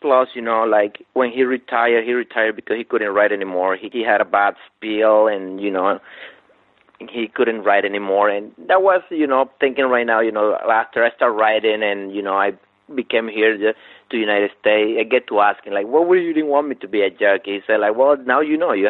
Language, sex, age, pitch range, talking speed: English, male, 30-49, 105-140 Hz, 240 wpm